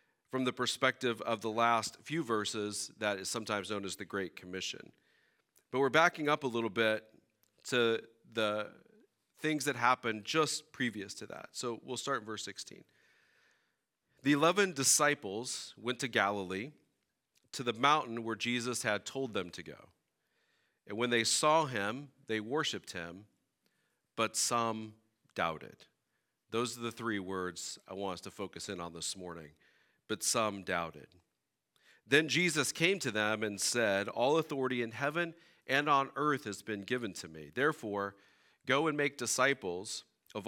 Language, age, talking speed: English, 40-59, 160 wpm